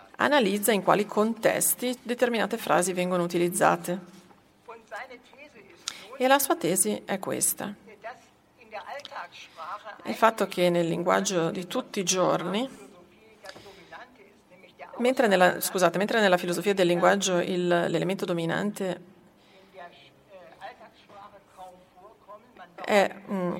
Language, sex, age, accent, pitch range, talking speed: Italian, female, 40-59, native, 180-215 Hz, 80 wpm